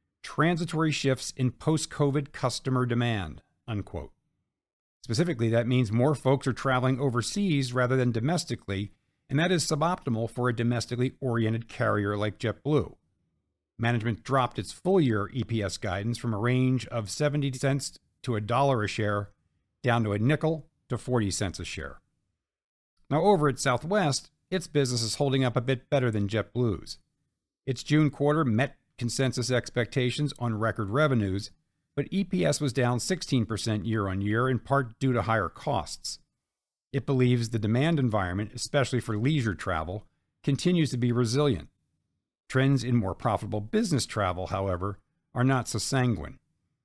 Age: 50-69